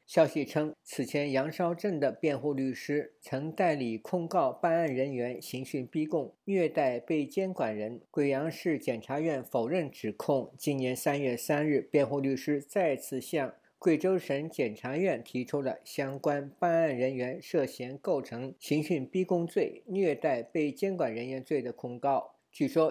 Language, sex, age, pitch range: Chinese, male, 50-69, 130-170 Hz